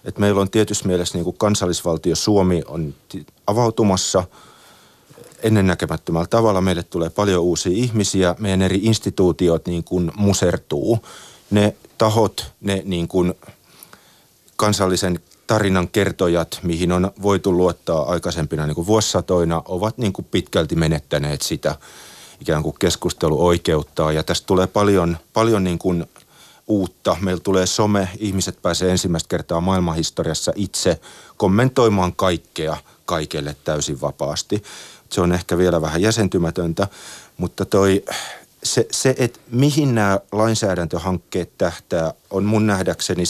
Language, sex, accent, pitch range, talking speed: Finnish, male, native, 85-100 Hz, 115 wpm